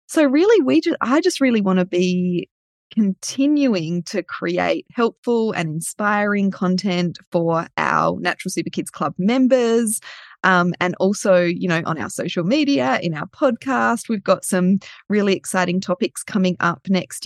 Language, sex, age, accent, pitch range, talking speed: English, female, 20-39, Australian, 175-220 Hz, 155 wpm